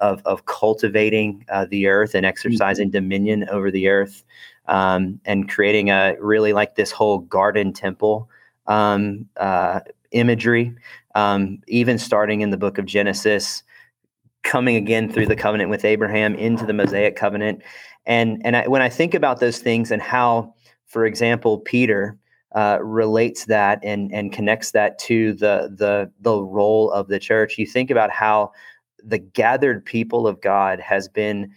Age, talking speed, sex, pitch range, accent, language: 30-49, 160 wpm, male, 100-115 Hz, American, English